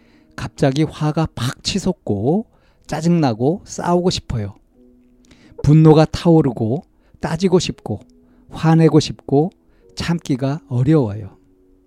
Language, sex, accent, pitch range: Korean, male, native, 110-155 Hz